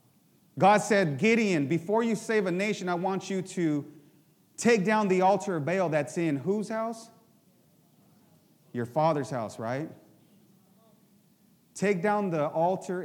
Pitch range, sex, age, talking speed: 155-200 Hz, male, 30-49, 140 wpm